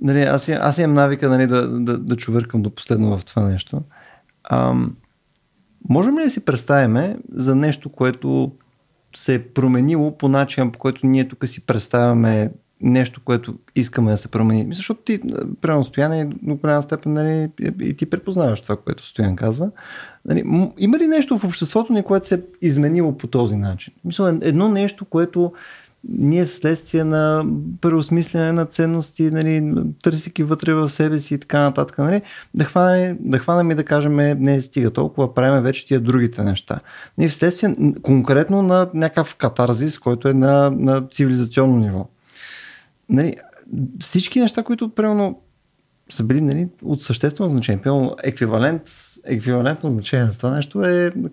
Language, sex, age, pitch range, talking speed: Bulgarian, male, 30-49, 125-170 Hz, 160 wpm